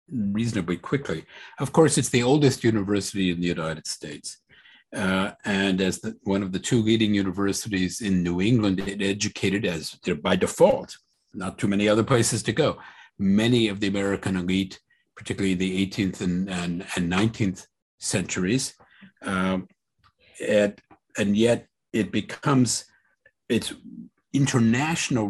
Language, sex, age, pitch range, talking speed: English, male, 50-69, 95-120 Hz, 140 wpm